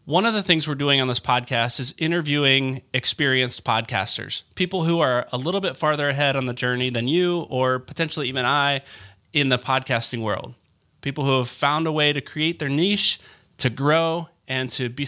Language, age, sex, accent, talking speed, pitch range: English, 30-49, male, American, 195 wpm, 125-150 Hz